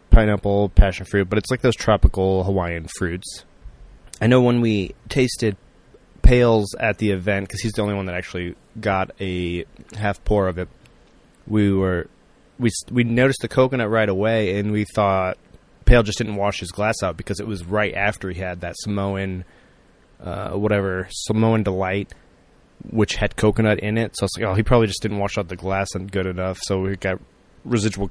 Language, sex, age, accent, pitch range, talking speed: English, male, 20-39, American, 95-115 Hz, 190 wpm